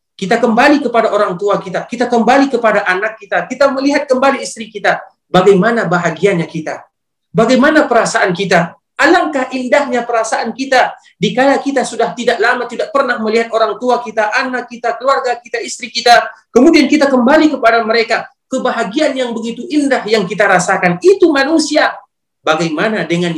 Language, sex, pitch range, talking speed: Indonesian, male, 155-245 Hz, 150 wpm